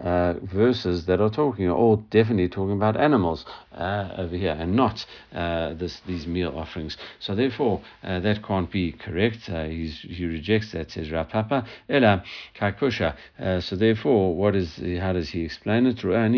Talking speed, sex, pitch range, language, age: 170 wpm, male, 85-105 Hz, English, 50-69